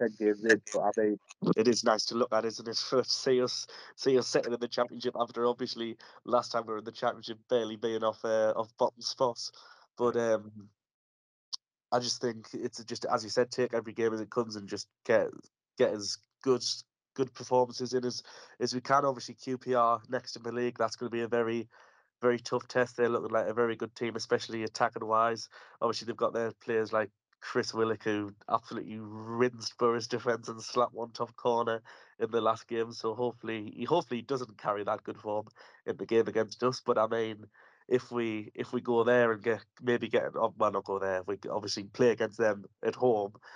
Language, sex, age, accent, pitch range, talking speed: English, male, 20-39, British, 110-120 Hz, 205 wpm